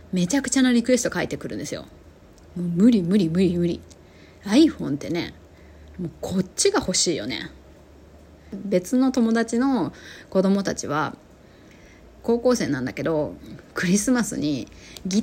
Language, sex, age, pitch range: Japanese, female, 20-39, 165-230 Hz